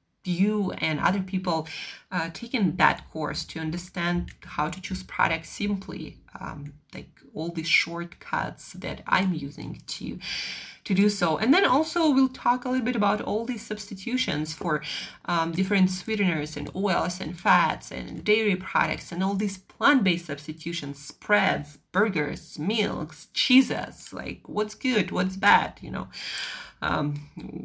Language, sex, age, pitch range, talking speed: English, female, 30-49, 175-225 Hz, 145 wpm